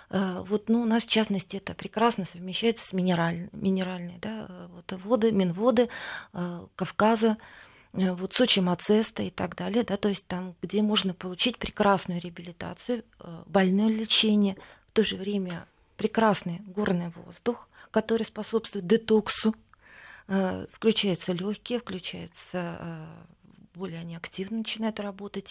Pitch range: 180-220 Hz